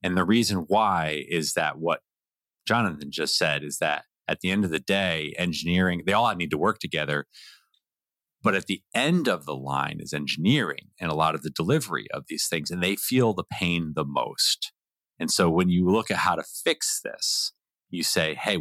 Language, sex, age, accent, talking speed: English, male, 30-49, American, 205 wpm